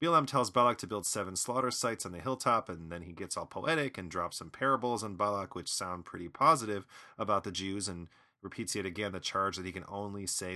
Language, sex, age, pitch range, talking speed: English, male, 30-49, 95-130 Hz, 235 wpm